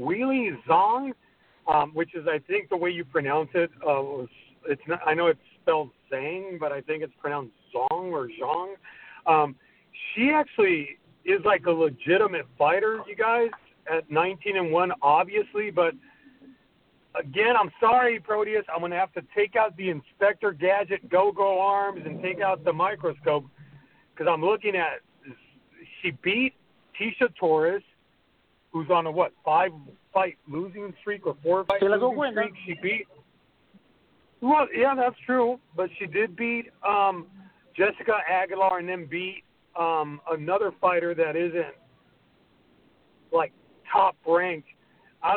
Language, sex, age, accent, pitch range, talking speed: English, male, 40-59, American, 165-215 Hz, 140 wpm